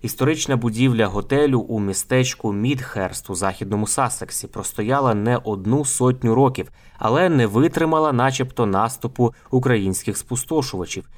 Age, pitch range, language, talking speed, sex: 20-39, 105-130 Hz, Ukrainian, 115 wpm, male